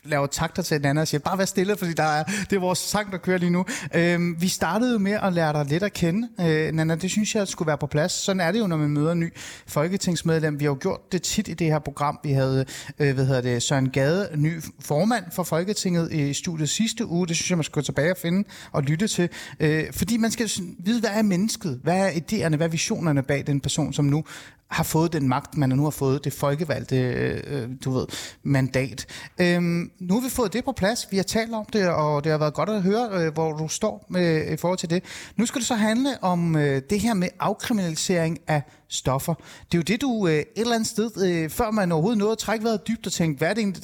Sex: male